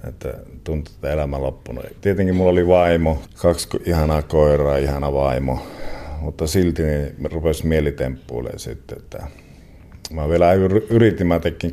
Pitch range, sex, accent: 70-90 Hz, male, native